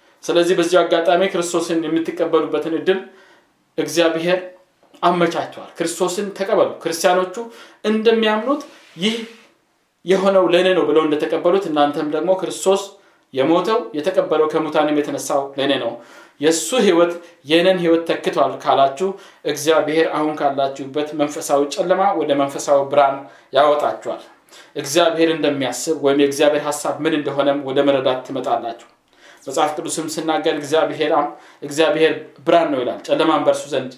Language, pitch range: Amharic, 155-185 Hz